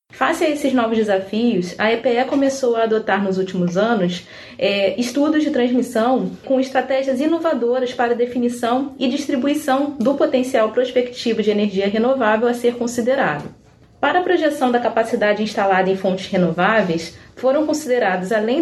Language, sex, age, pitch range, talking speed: Portuguese, female, 20-39, 210-260 Hz, 140 wpm